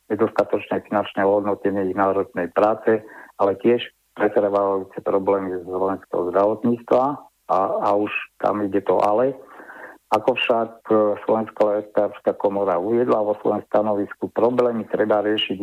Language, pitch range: Slovak, 100-115 Hz